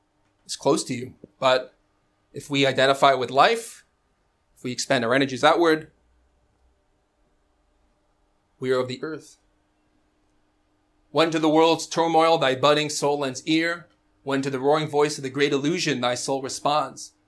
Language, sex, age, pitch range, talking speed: English, male, 30-49, 100-140 Hz, 150 wpm